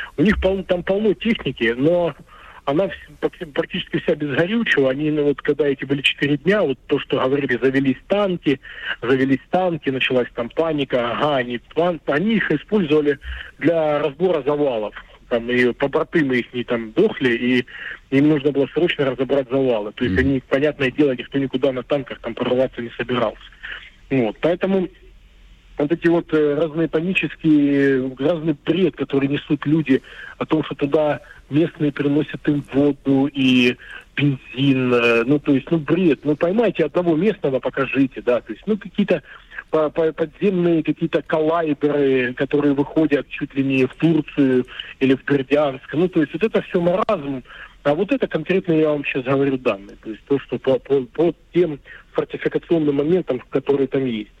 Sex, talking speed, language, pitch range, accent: male, 160 wpm, Russian, 135-165 Hz, native